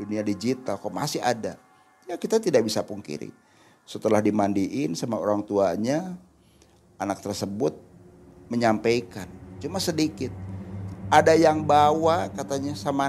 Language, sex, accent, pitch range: Indonesian, male, native, 105-145 Hz